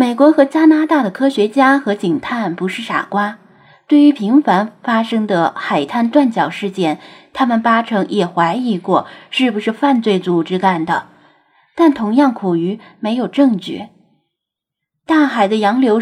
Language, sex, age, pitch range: Chinese, female, 10-29, 190-265 Hz